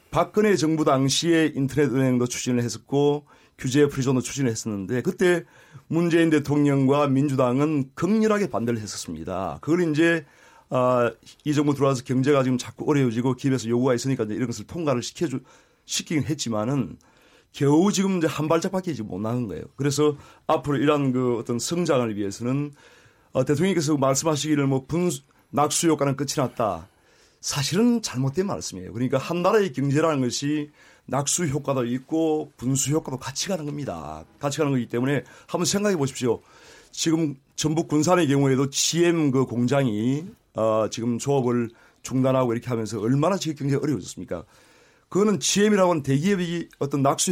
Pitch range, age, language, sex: 125-160 Hz, 30-49, Korean, male